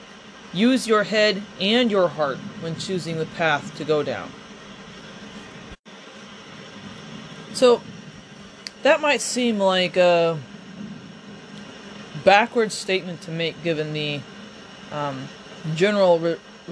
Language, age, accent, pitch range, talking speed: English, 20-39, American, 175-210 Hz, 100 wpm